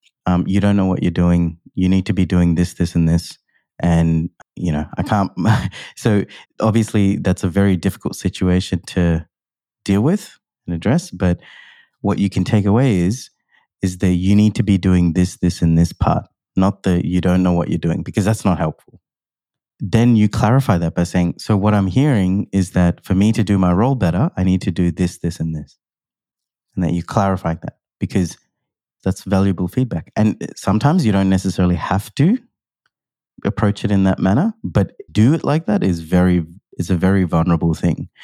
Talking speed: 195 wpm